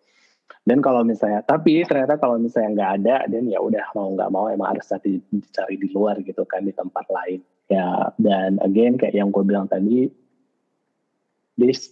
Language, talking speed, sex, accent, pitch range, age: Indonesian, 170 wpm, male, native, 100-120 Hz, 20-39